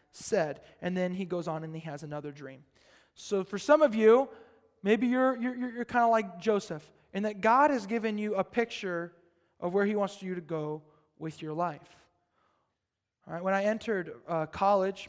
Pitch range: 165-215 Hz